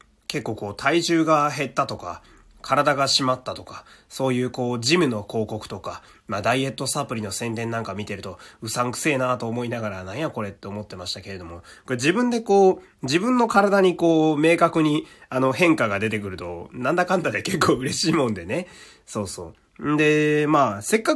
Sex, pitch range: male, 105-155 Hz